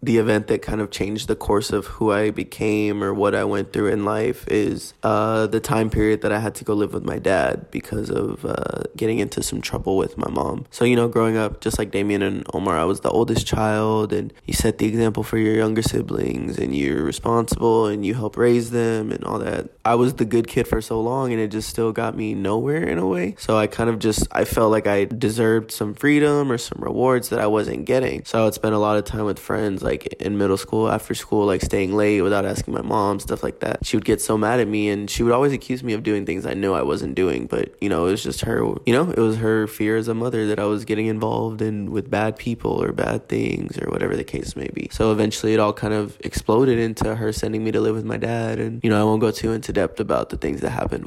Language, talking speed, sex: English, 265 wpm, male